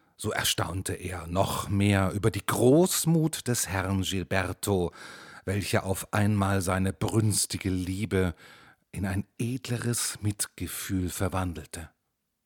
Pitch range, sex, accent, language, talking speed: 95-130 Hz, male, German, German, 105 wpm